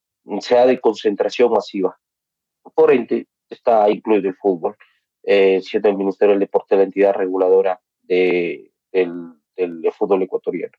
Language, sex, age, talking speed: Spanish, male, 30-49, 140 wpm